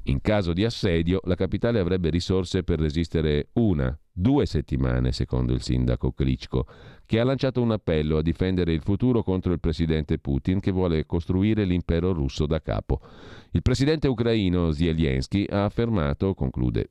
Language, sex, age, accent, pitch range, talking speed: Italian, male, 40-59, native, 75-105 Hz, 155 wpm